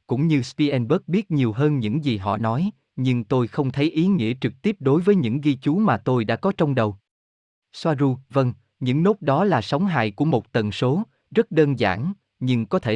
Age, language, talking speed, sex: 20-39, Vietnamese, 220 wpm, male